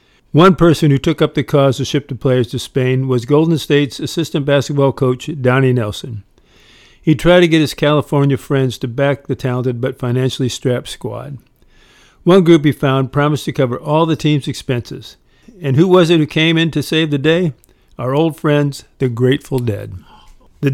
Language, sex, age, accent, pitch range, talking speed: English, male, 50-69, American, 130-155 Hz, 190 wpm